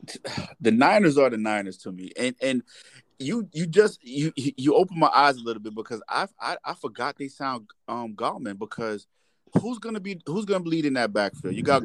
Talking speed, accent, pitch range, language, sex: 210 wpm, American, 120-150 Hz, English, male